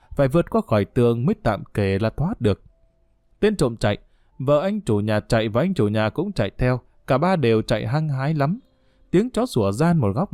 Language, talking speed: Vietnamese, 225 wpm